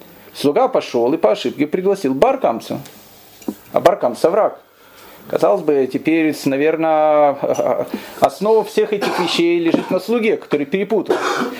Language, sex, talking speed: Russian, male, 120 wpm